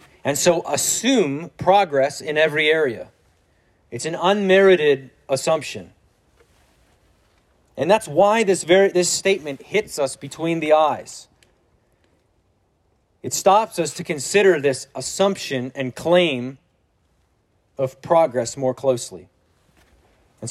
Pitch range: 110-145 Hz